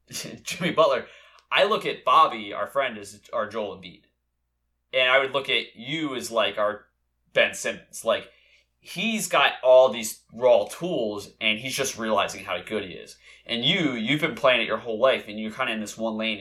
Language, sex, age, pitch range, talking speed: English, male, 20-39, 105-135 Hz, 200 wpm